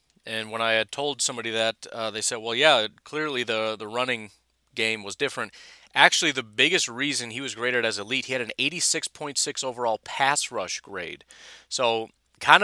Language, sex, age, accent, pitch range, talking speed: English, male, 30-49, American, 110-145 Hz, 180 wpm